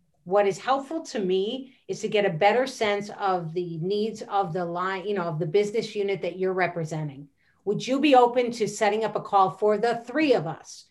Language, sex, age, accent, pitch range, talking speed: English, female, 40-59, American, 185-225 Hz, 220 wpm